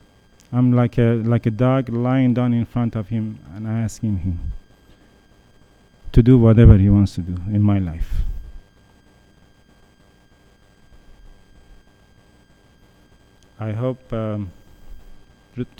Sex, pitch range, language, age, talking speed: male, 100-125 Hz, English, 40-59, 105 wpm